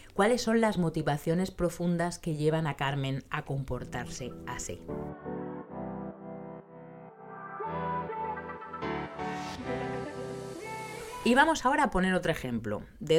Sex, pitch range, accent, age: female, 130-180 Hz, Spanish, 30-49